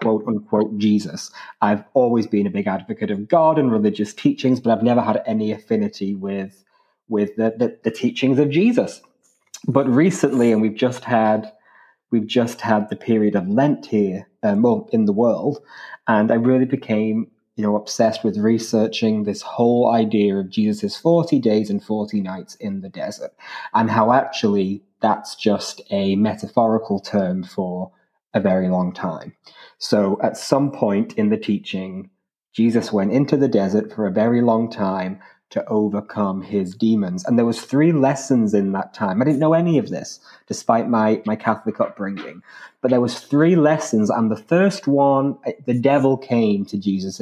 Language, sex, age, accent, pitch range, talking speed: English, male, 20-39, British, 105-135 Hz, 175 wpm